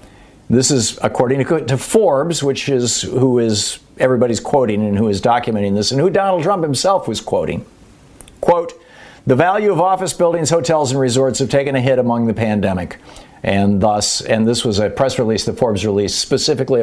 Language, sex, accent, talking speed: English, male, American, 185 wpm